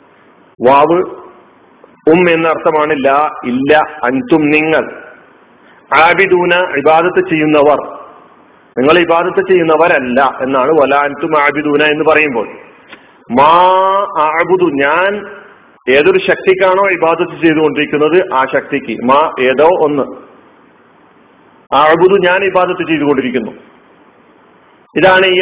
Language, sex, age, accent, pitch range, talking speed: Malayalam, male, 50-69, native, 145-185 Hz, 75 wpm